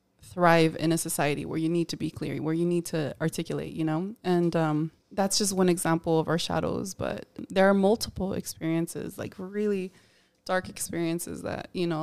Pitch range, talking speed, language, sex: 165-195 Hz, 190 wpm, English, female